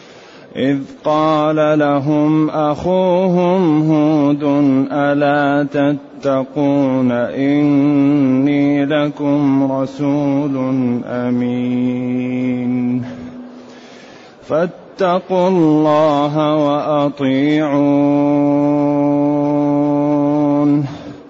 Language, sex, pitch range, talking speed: Arabic, male, 140-155 Hz, 40 wpm